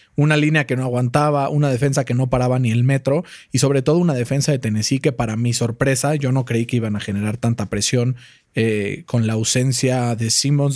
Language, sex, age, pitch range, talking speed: Spanish, male, 30-49, 120-150 Hz, 220 wpm